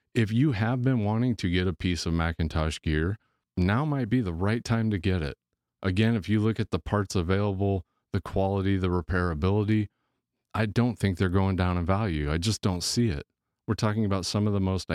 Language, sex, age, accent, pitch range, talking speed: English, male, 30-49, American, 90-110 Hz, 215 wpm